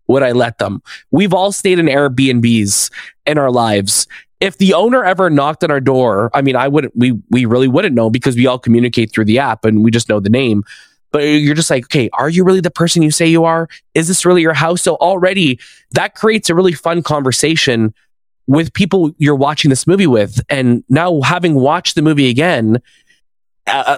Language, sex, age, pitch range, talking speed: English, male, 20-39, 120-165 Hz, 210 wpm